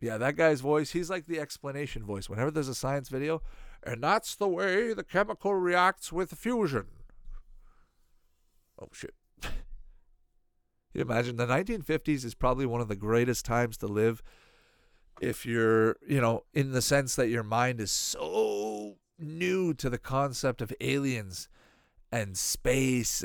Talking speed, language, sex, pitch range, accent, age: 150 wpm, English, male, 115-155 Hz, American, 40-59